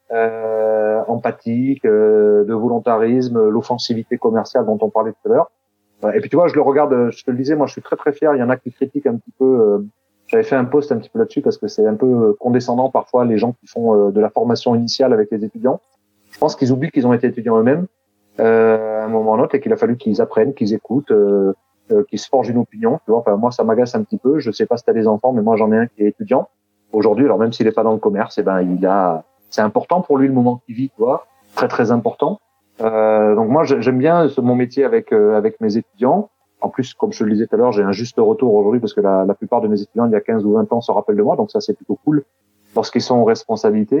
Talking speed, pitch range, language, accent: 280 wpm, 110-135 Hz, French, French